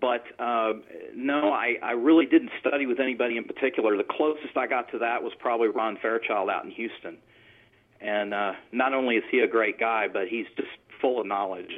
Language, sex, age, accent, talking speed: English, male, 40-59, American, 205 wpm